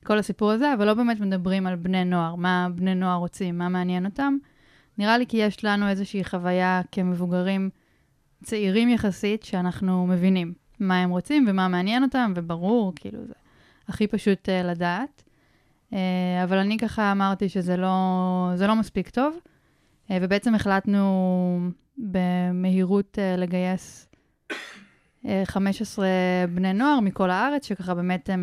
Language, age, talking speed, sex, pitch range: Hebrew, 20-39, 130 wpm, female, 180-205 Hz